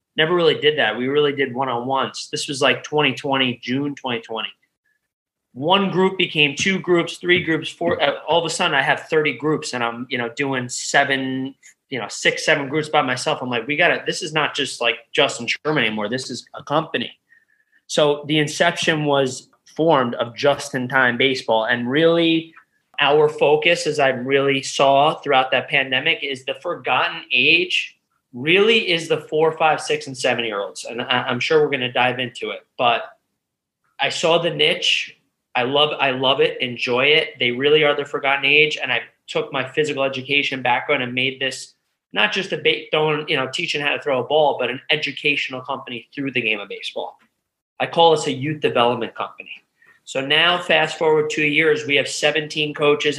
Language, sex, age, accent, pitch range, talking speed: English, male, 20-39, American, 130-160 Hz, 190 wpm